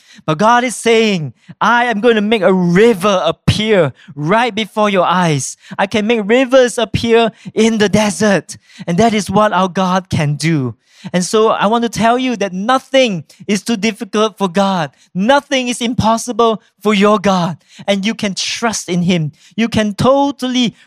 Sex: male